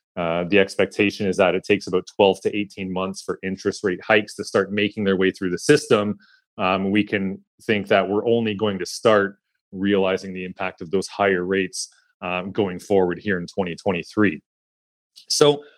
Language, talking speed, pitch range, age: English, 185 wpm, 95-130 Hz, 20-39